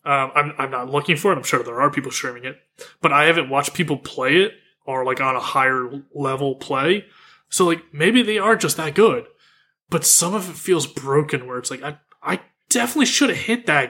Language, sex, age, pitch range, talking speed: English, male, 20-39, 135-180 Hz, 225 wpm